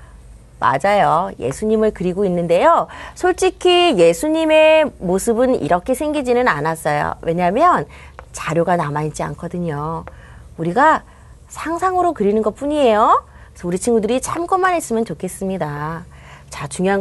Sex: female